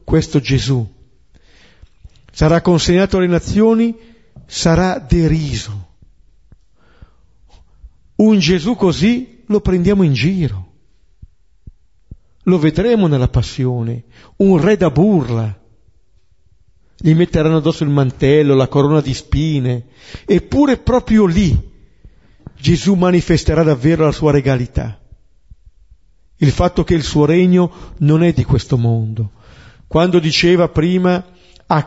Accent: native